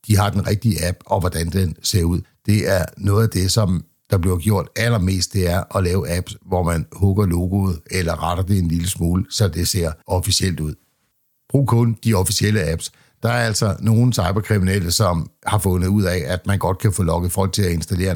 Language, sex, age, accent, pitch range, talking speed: Danish, male, 60-79, native, 85-105 Hz, 215 wpm